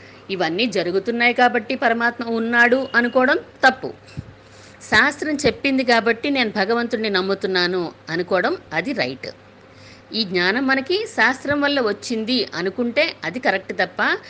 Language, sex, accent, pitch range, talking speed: Telugu, female, native, 190-250 Hz, 110 wpm